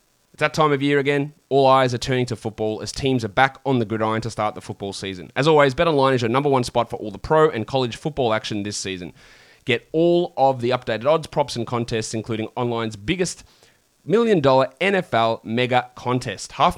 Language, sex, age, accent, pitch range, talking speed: English, male, 20-39, Australian, 110-140 Hz, 215 wpm